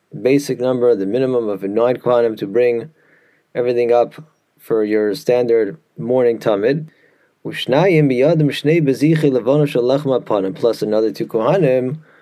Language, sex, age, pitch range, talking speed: English, male, 30-49, 120-150 Hz, 100 wpm